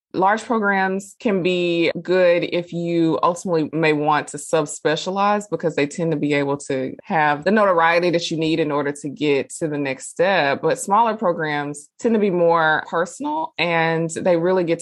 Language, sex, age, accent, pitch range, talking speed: English, female, 20-39, American, 145-185 Hz, 180 wpm